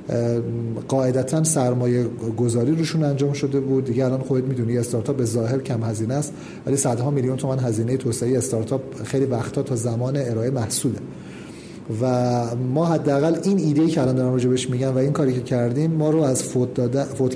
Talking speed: 170 wpm